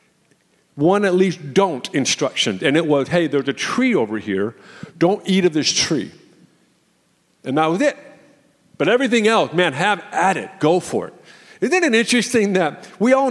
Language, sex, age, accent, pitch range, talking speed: English, male, 50-69, American, 145-210 Hz, 175 wpm